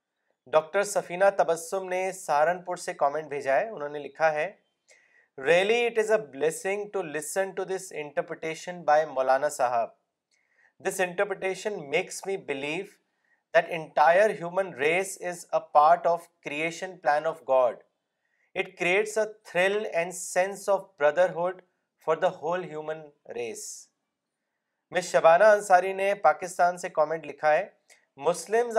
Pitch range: 155-195 Hz